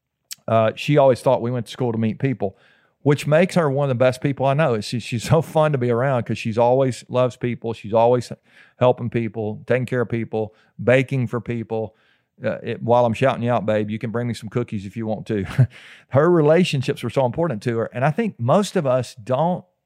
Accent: American